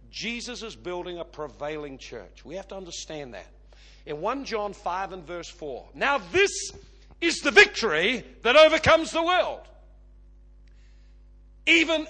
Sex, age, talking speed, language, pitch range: male, 60-79, 140 wpm, English, 205-330 Hz